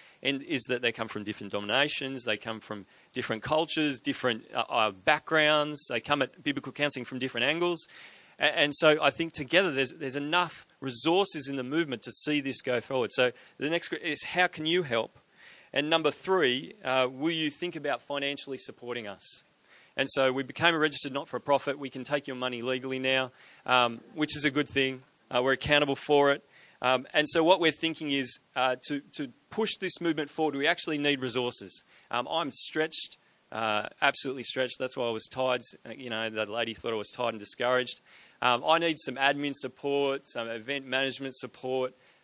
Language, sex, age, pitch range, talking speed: English, male, 30-49, 115-145 Hz, 190 wpm